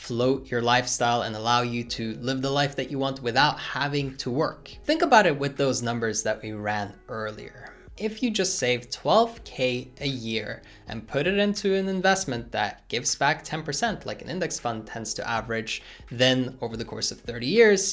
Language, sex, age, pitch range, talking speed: English, male, 20-39, 120-195 Hz, 195 wpm